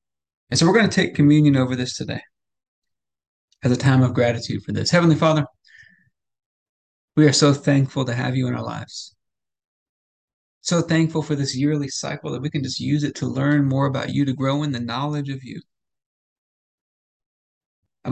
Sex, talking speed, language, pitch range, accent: male, 180 wpm, English, 125-155 Hz, American